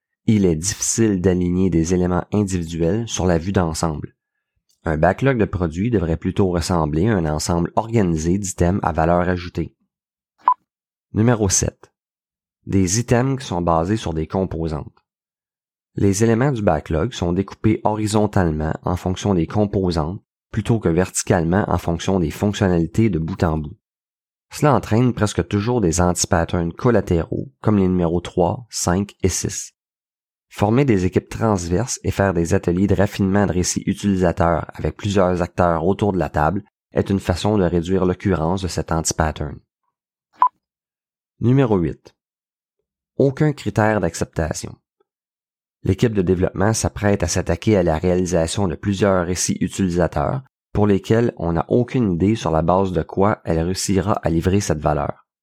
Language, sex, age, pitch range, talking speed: French, male, 30-49, 85-105 Hz, 150 wpm